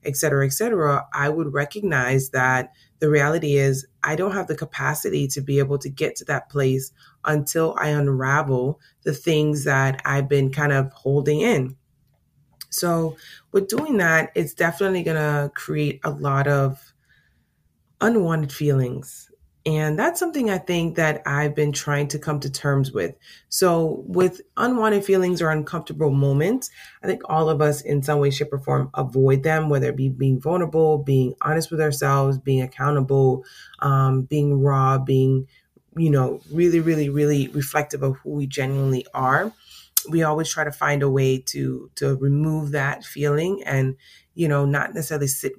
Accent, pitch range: American, 135-155 Hz